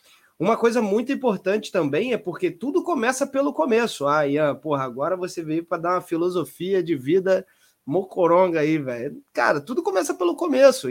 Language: Portuguese